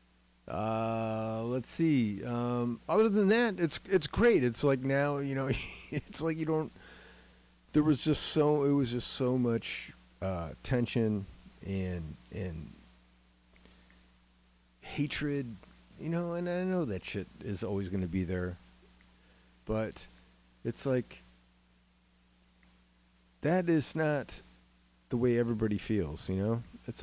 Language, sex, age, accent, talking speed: English, male, 30-49, American, 130 wpm